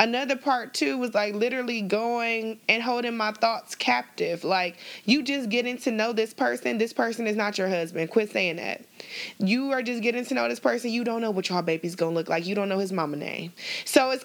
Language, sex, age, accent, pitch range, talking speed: English, female, 20-39, American, 190-240 Hz, 230 wpm